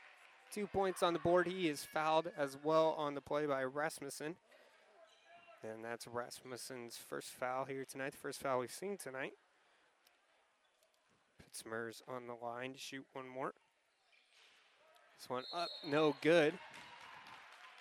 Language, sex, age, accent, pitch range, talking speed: English, male, 20-39, American, 130-170 Hz, 140 wpm